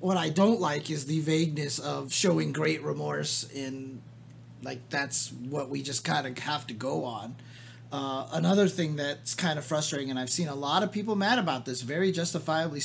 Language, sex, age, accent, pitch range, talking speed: English, male, 30-49, American, 140-175 Hz, 195 wpm